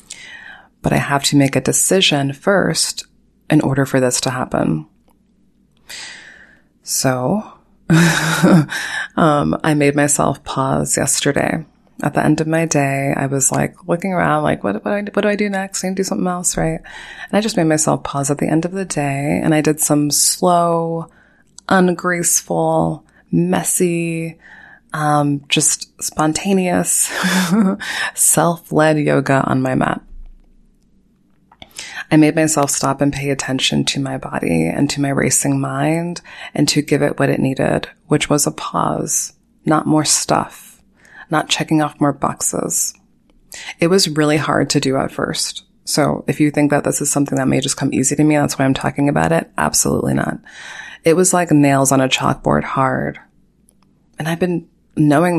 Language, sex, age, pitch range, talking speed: English, female, 20-39, 140-170 Hz, 165 wpm